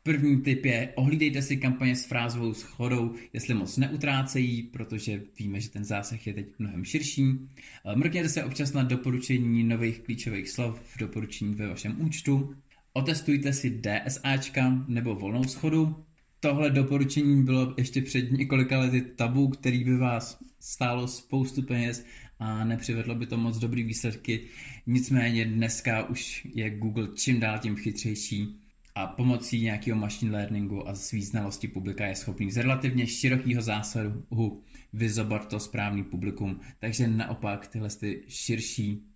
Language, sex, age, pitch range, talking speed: Czech, male, 20-39, 105-130 Hz, 140 wpm